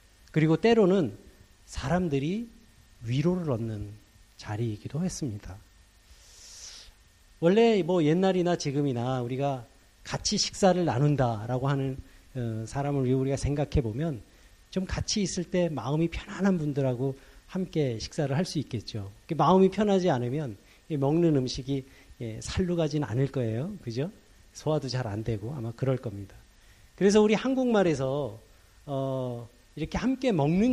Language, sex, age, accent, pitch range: Korean, male, 40-59, native, 115-170 Hz